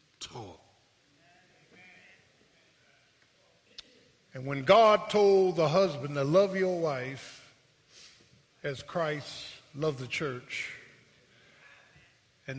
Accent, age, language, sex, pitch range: American, 50-69, English, male, 135-180 Hz